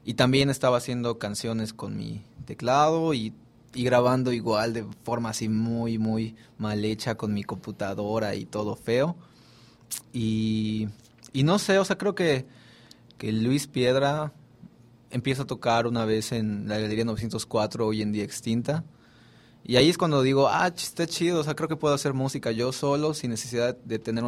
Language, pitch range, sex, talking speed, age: English, 115-140 Hz, male, 175 wpm, 20-39